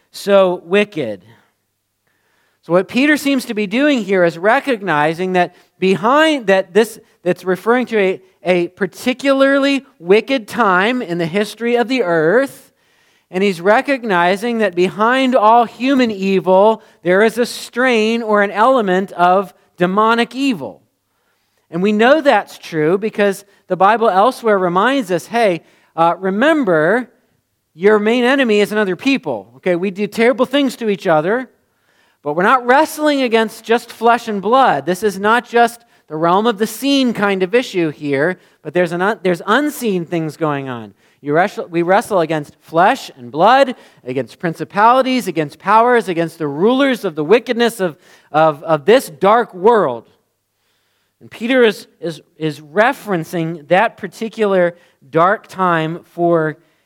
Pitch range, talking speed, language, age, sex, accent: 175-240 Hz, 150 wpm, English, 40-59, male, American